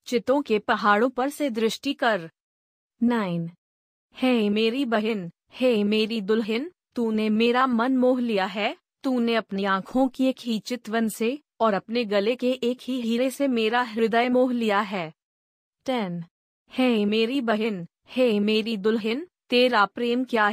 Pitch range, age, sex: 215-250 Hz, 30-49, female